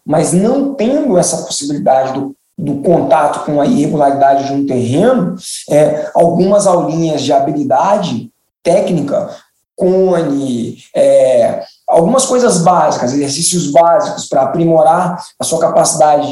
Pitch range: 160-190 Hz